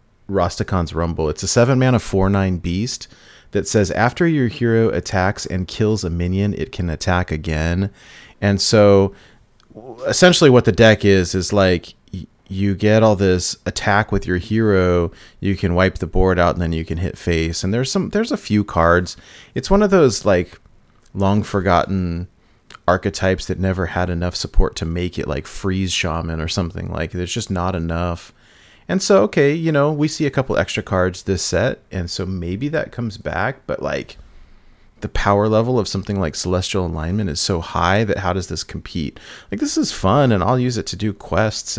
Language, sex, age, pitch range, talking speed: English, male, 30-49, 90-110 Hz, 190 wpm